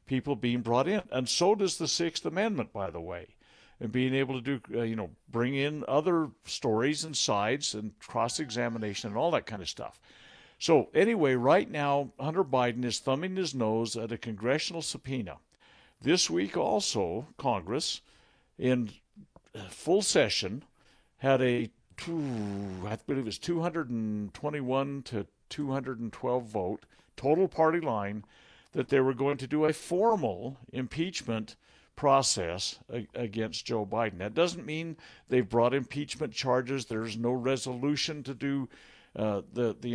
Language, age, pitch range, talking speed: English, 60-79, 115-140 Hz, 145 wpm